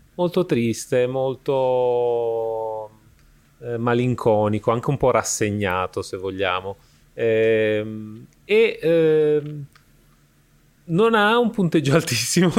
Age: 30-49